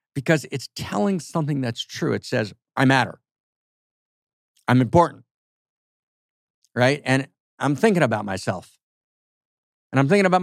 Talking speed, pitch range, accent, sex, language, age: 125 wpm, 105-140 Hz, American, male, English, 50-69